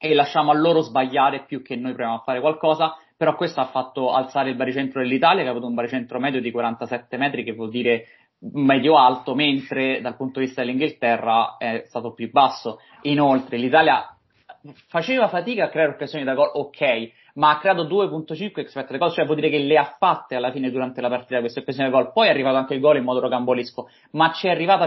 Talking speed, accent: 210 wpm, native